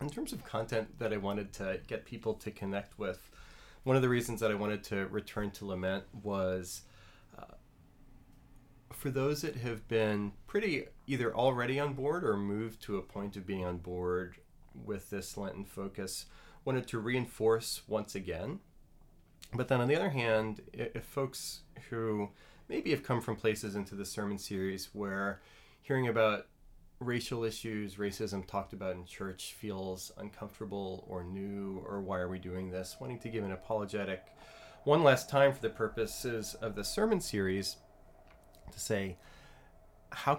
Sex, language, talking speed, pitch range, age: male, English, 165 wpm, 95-115 Hz, 30-49